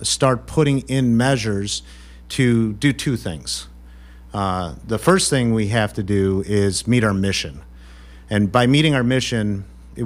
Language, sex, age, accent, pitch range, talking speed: English, male, 40-59, American, 75-125 Hz, 155 wpm